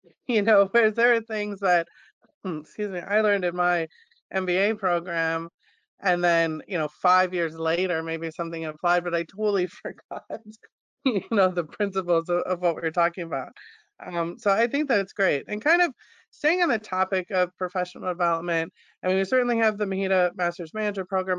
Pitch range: 175-210 Hz